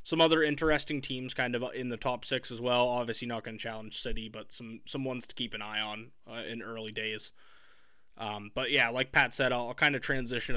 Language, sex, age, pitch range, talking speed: English, male, 20-39, 120-150 Hz, 235 wpm